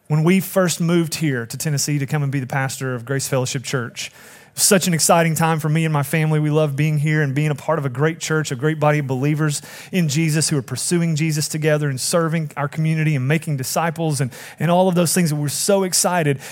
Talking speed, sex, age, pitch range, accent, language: 255 wpm, male, 30-49, 130-155 Hz, American, English